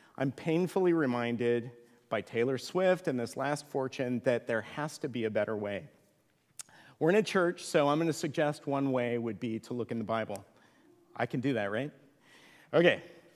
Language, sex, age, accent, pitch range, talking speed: English, male, 40-59, American, 125-175 Hz, 190 wpm